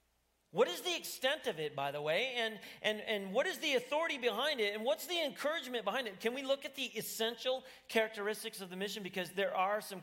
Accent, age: American, 40-59